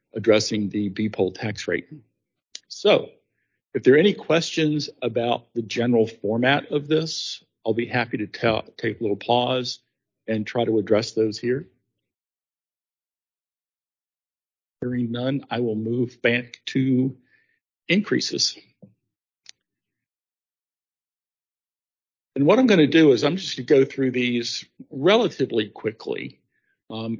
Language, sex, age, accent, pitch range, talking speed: English, male, 50-69, American, 115-135 Hz, 125 wpm